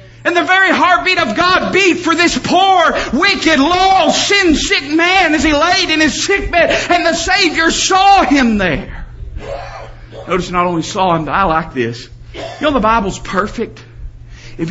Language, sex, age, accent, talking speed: English, male, 40-59, American, 170 wpm